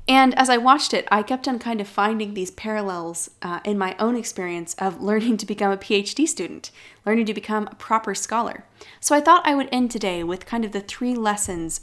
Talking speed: 225 wpm